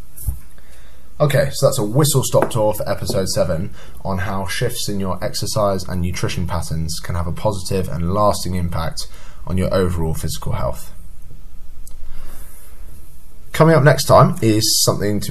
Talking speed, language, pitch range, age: 150 wpm, English, 85-110 Hz, 10-29